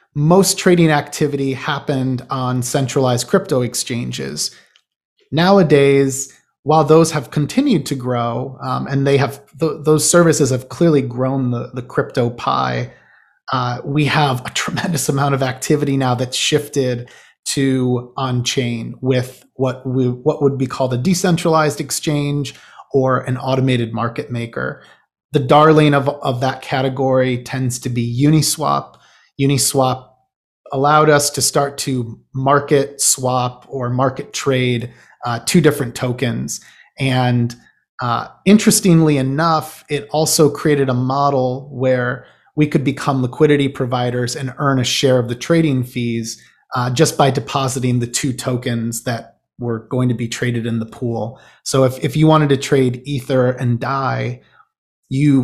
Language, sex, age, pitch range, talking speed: English, male, 30-49, 125-145 Hz, 145 wpm